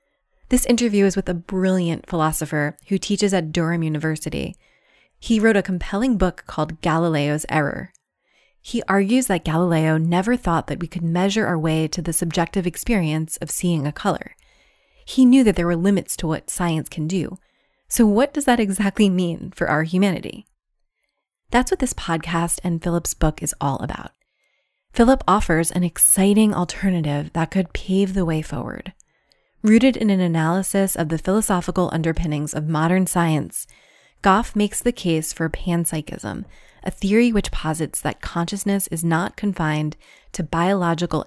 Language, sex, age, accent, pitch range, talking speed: English, female, 20-39, American, 160-195 Hz, 160 wpm